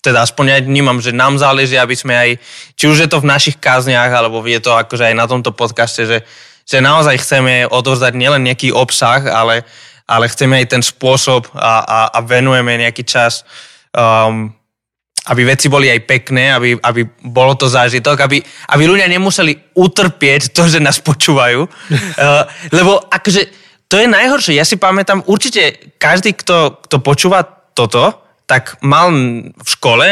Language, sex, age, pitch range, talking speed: Slovak, male, 20-39, 125-160 Hz, 165 wpm